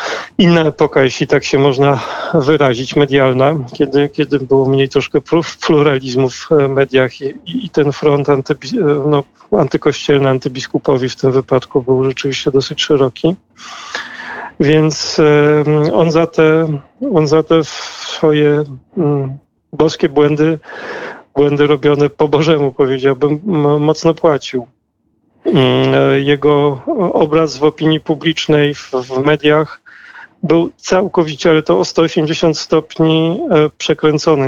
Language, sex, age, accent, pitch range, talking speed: Polish, male, 40-59, native, 140-160 Hz, 120 wpm